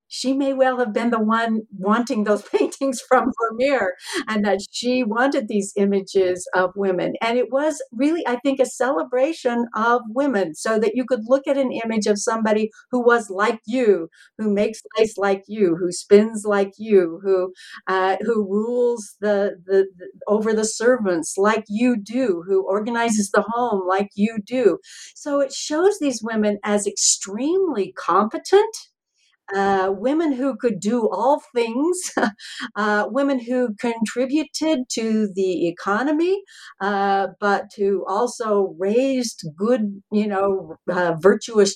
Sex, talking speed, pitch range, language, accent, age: female, 150 wpm, 200-255 Hz, English, American, 60-79